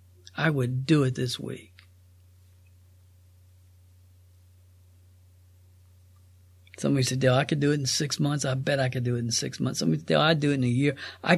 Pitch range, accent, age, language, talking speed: 90-150 Hz, American, 50-69, English, 185 wpm